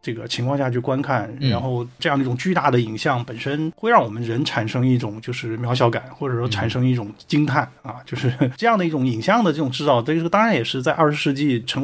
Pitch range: 120-150 Hz